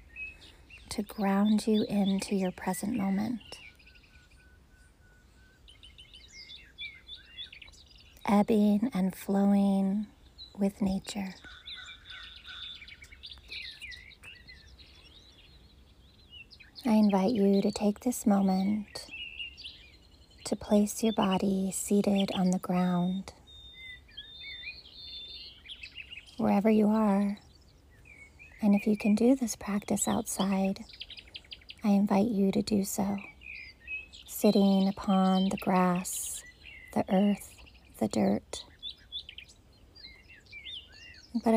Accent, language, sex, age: American, English, female, 30-49